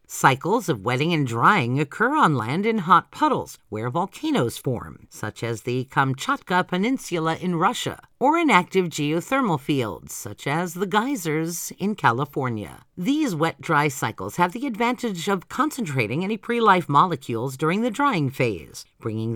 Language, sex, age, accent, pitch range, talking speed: English, female, 50-69, American, 140-230 Hz, 150 wpm